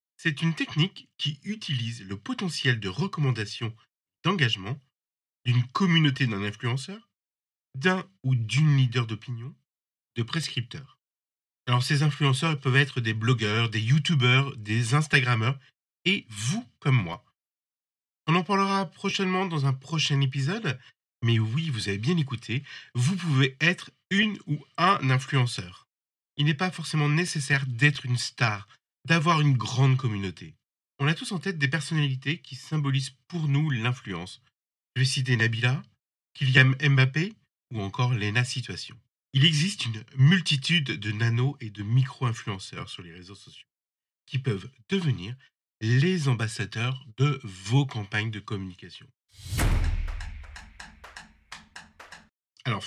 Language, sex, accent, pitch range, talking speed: French, male, French, 115-150 Hz, 130 wpm